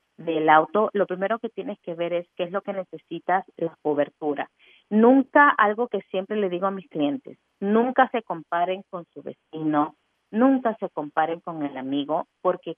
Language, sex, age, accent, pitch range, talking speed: English, female, 40-59, American, 155-195 Hz, 180 wpm